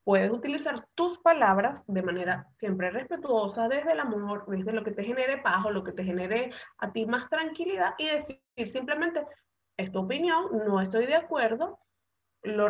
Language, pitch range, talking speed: Spanish, 210-315 Hz, 175 wpm